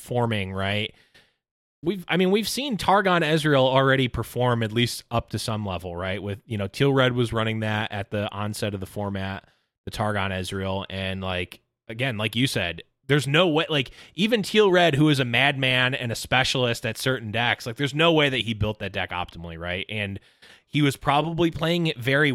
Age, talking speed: 20-39, 205 wpm